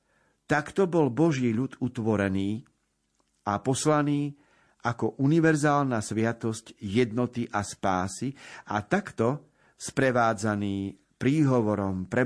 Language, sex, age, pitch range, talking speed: Slovak, male, 50-69, 100-135 Hz, 90 wpm